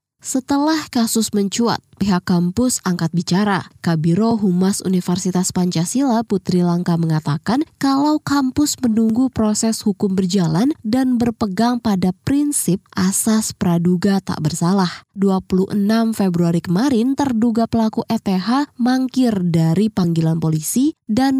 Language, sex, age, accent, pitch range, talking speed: Indonesian, female, 20-39, native, 180-235 Hz, 110 wpm